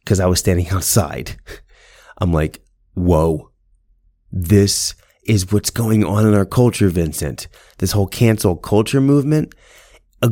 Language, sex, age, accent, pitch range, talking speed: English, male, 30-49, American, 95-140 Hz, 135 wpm